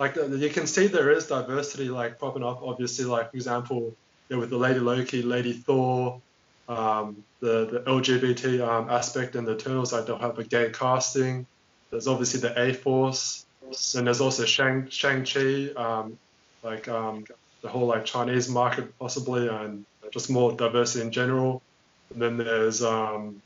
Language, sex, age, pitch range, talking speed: English, male, 20-39, 115-135 Hz, 165 wpm